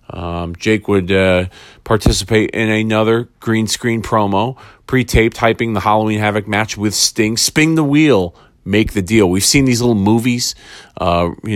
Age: 40-59